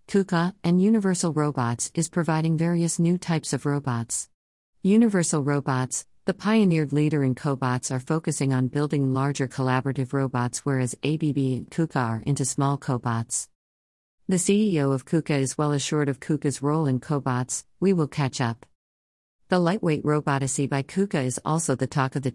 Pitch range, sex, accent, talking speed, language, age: 130-160 Hz, female, American, 160 wpm, English, 50-69